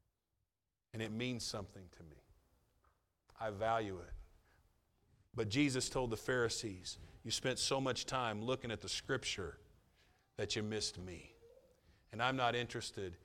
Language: English